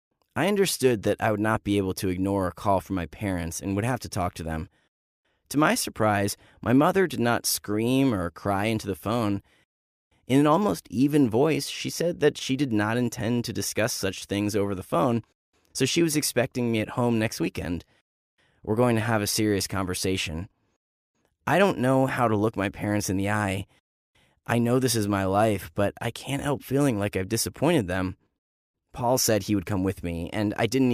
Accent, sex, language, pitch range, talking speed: American, male, English, 95-130 Hz, 205 wpm